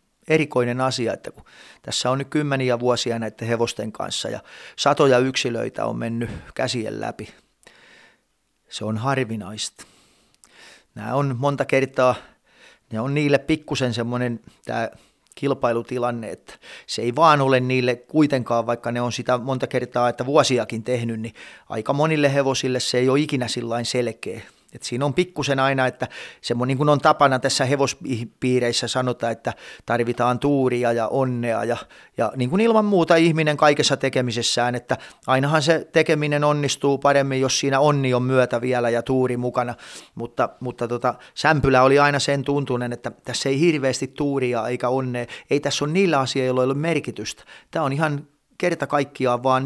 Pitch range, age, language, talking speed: 120-140 Hz, 30-49, Finnish, 155 wpm